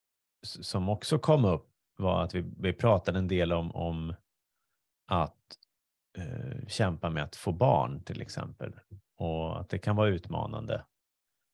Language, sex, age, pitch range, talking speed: Swedish, male, 30-49, 85-110 Hz, 140 wpm